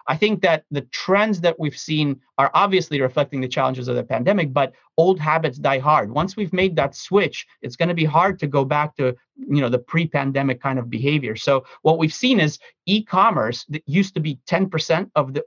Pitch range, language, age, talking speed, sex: 140-180 Hz, English, 30-49, 215 wpm, male